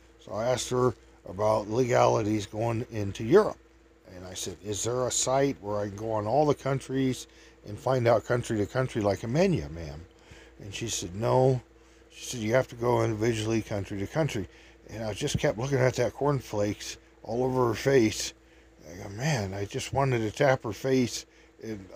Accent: American